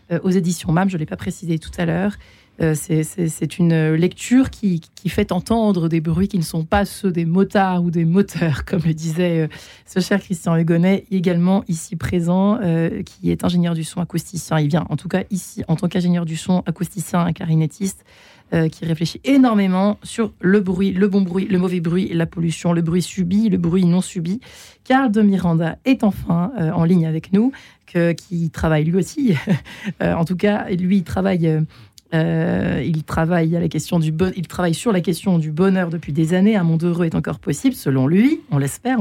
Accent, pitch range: French, 165-190 Hz